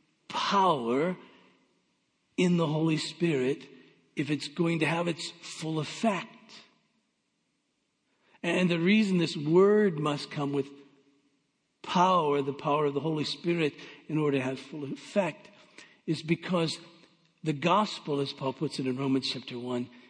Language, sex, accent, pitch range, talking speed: English, male, American, 140-175 Hz, 135 wpm